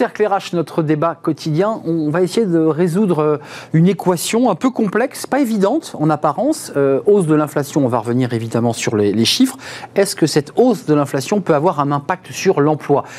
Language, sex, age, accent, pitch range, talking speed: French, male, 40-59, French, 125-170 Hz, 190 wpm